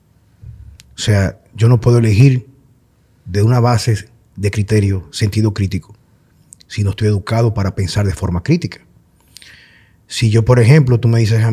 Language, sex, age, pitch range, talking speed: Spanish, male, 30-49, 100-115 Hz, 155 wpm